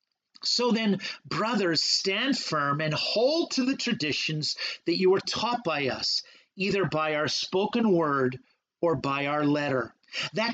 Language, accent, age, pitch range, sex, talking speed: English, American, 50-69, 175-235 Hz, male, 150 wpm